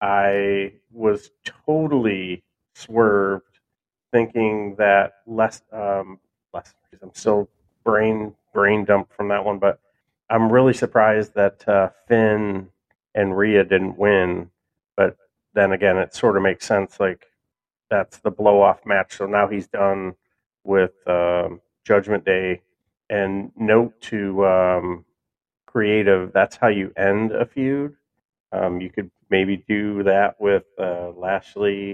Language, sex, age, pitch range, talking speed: English, male, 40-59, 95-110 Hz, 130 wpm